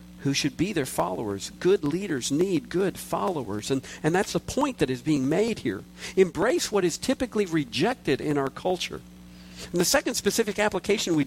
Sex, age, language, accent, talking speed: male, 50-69, English, American, 180 wpm